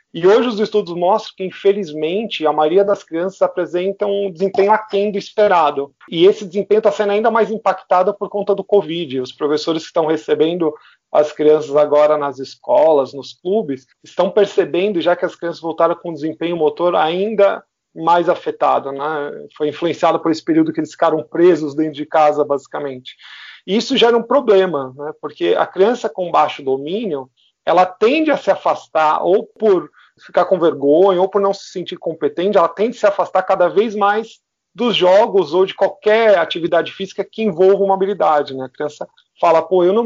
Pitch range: 155-200 Hz